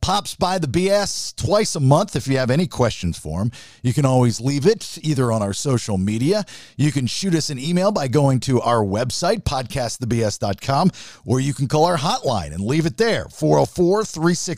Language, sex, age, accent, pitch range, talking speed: English, male, 50-69, American, 120-165 Hz, 200 wpm